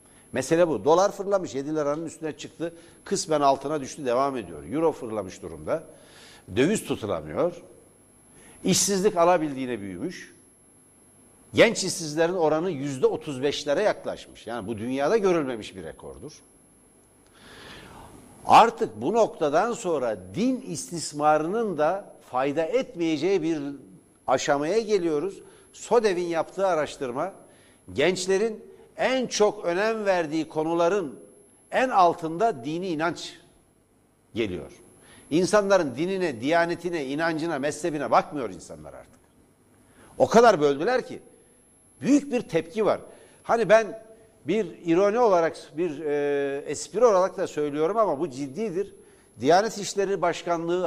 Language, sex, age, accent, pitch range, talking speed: Turkish, male, 60-79, native, 155-220 Hz, 105 wpm